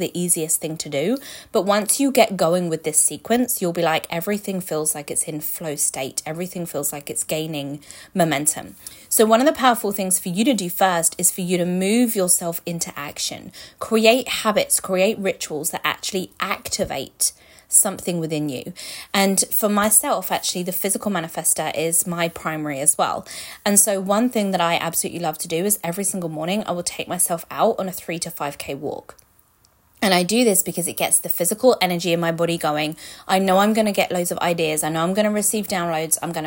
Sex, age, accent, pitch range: female, 20-39, British, 165-210 Hz